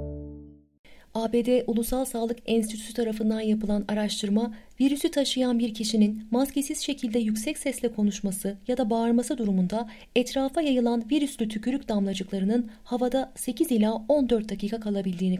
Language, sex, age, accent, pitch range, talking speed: Turkish, female, 30-49, native, 195-255 Hz, 120 wpm